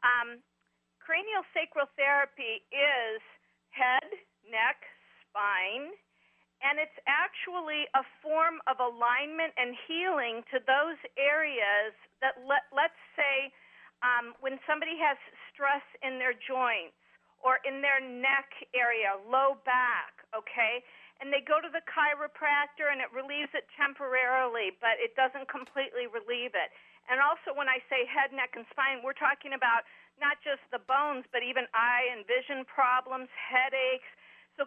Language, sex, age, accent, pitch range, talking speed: English, female, 50-69, American, 250-290 Hz, 140 wpm